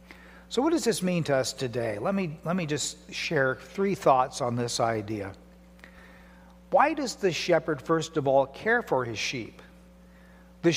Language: English